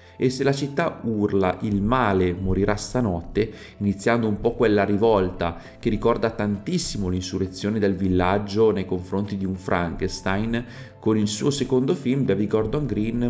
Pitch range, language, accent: 95-130 Hz, Italian, native